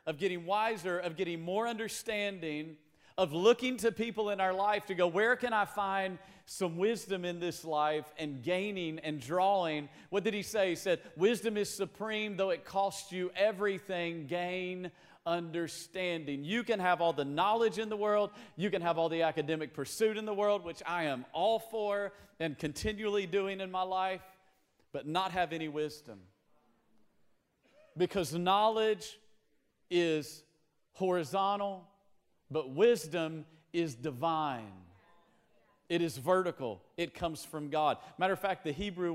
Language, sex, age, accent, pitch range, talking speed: English, male, 40-59, American, 150-195 Hz, 155 wpm